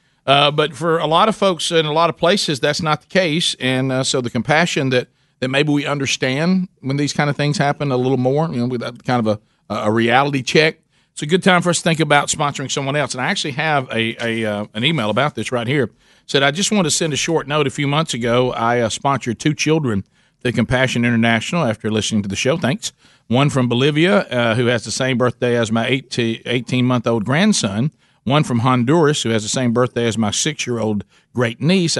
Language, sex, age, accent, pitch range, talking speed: English, male, 50-69, American, 120-150 Hz, 235 wpm